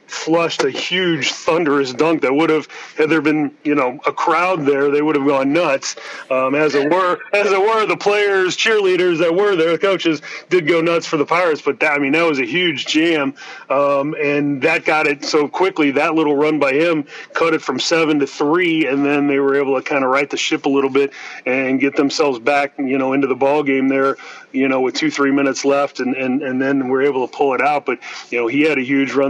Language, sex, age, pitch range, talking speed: English, male, 30-49, 135-160 Hz, 245 wpm